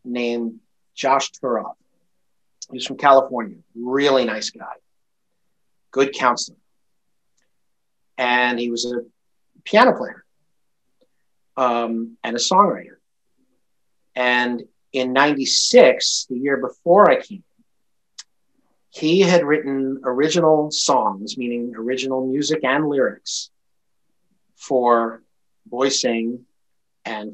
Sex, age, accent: male, 50-69, American